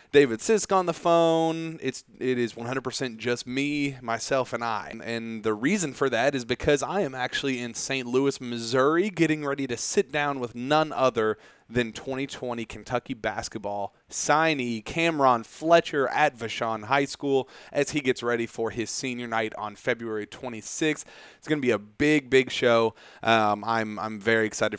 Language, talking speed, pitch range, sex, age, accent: English, 170 wpm, 110-135 Hz, male, 30-49, American